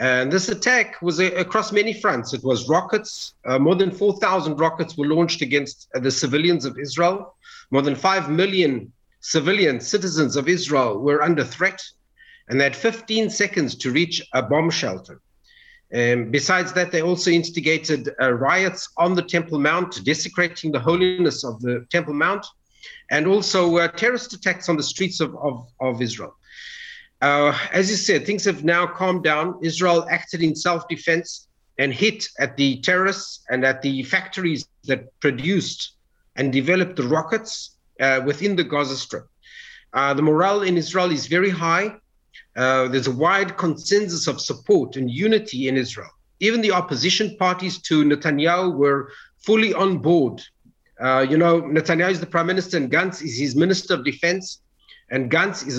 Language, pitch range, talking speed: English, 145-190 Hz, 165 wpm